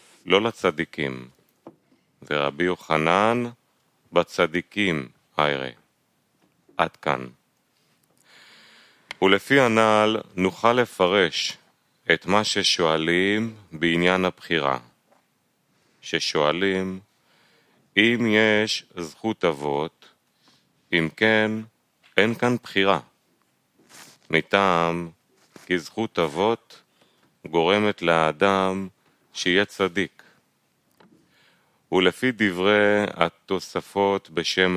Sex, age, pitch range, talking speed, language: male, 40-59, 85-110 Hz, 60 wpm, Hebrew